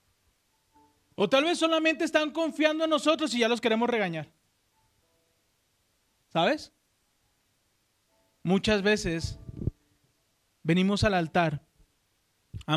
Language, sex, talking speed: Spanish, male, 95 wpm